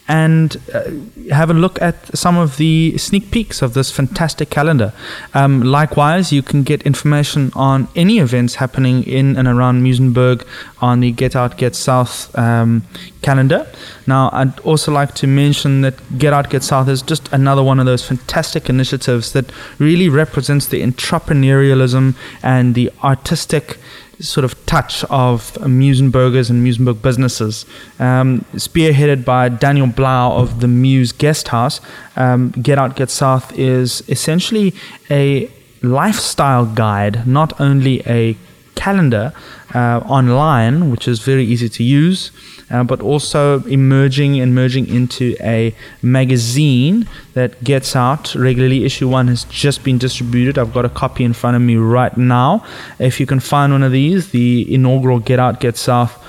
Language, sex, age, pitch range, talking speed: English, male, 20-39, 125-145 Hz, 155 wpm